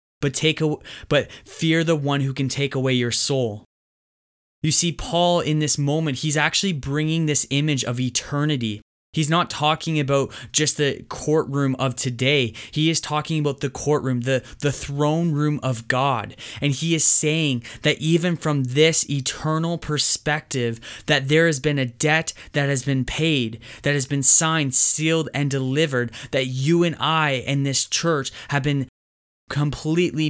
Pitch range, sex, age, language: 130-155 Hz, male, 20-39, English